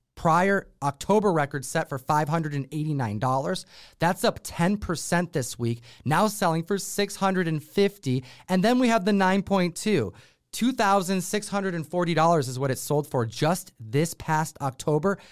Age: 30-49